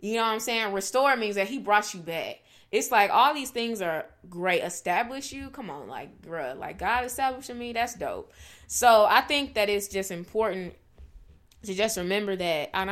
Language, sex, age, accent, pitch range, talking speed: English, female, 20-39, American, 175-225 Hz, 200 wpm